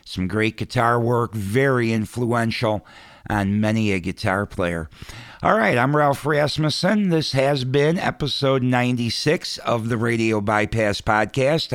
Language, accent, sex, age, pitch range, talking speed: English, American, male, 50-69, 105-130 Hz, 135 wpm